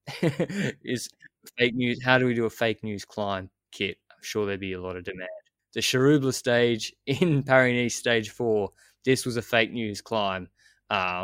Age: 20-39